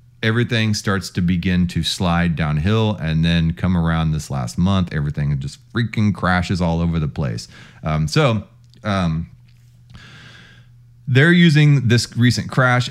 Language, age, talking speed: English, 30-49, 140 wpm